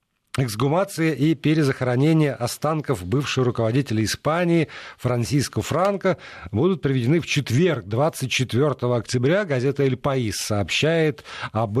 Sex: male